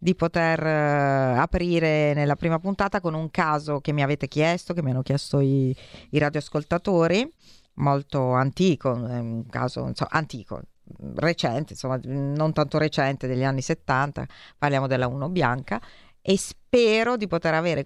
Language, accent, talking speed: Italian, native, 150 wpm